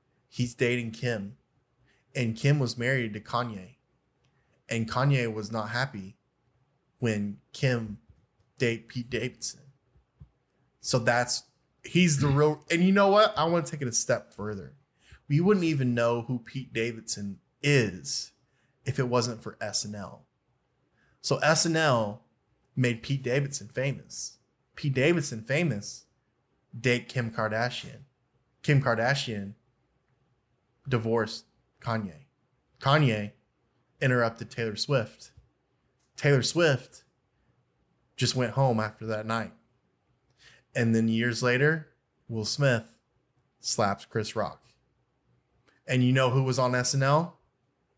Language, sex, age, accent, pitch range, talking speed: English, male, 20-39, American, 115-140 Hz, 115 wpm